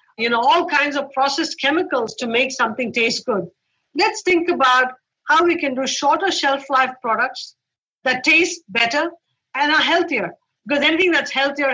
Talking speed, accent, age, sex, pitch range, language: 170 wpm, Indian, 50-69, female, 220-285 Hz, English